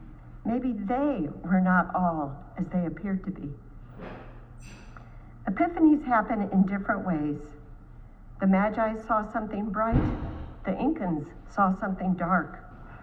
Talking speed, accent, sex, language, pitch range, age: 115 wpm, American, female, English, 155-235 Hz, 60-79